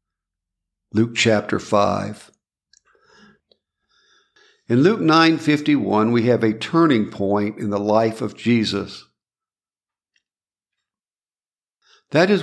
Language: English